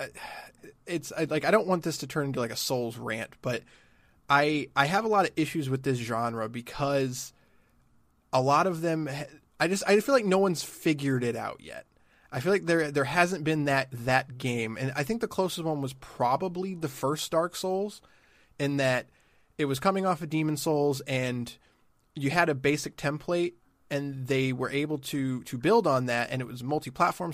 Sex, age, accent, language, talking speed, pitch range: male, 20-39, American, English, 200 wpm, 130-165 Hz